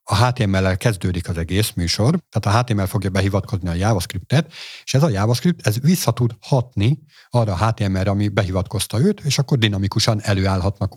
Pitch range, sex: 100-125 Hz, male